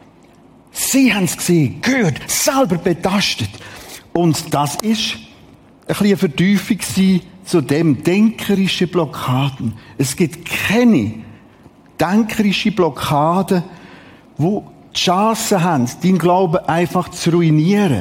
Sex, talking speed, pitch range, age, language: male, 105 wpm, 145-200 Hz, 50-69, German